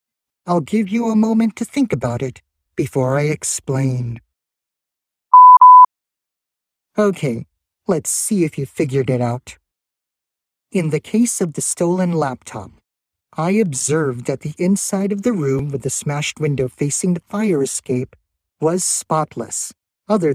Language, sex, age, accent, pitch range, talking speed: English, male, 50-69, American, 125-180 Hz, 135 wpm